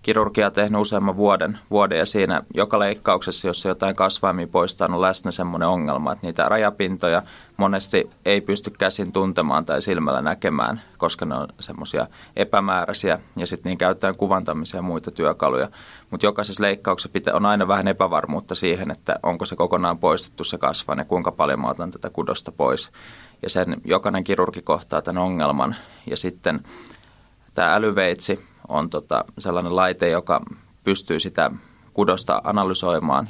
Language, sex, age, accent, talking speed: Finnish, male, 20-39, native, 150 wpm